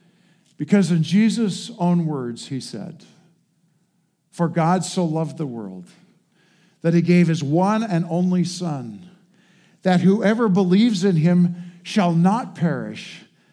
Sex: male